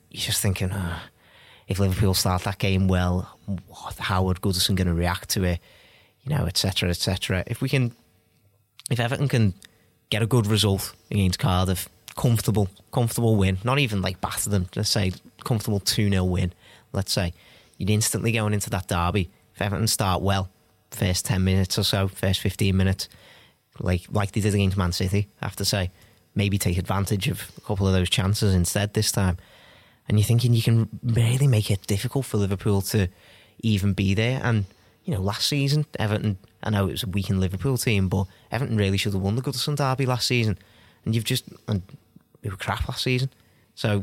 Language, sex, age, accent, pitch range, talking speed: English, male, 30-49, British, 95-110 Hz, 195 wpm